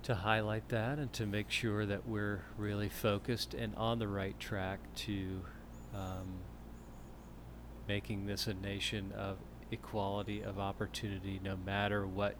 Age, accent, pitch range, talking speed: 40-59, American, 85-105 Hz, 140 wpm